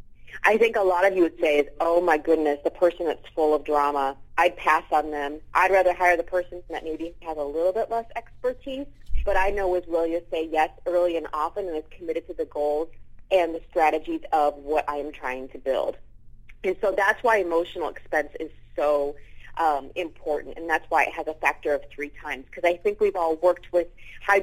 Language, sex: English, female